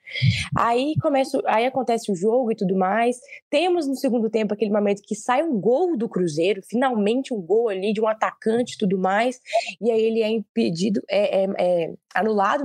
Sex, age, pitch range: female, 20-39, 200-265 Hz